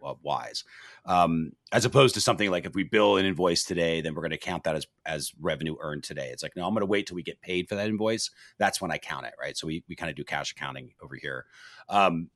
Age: 40-59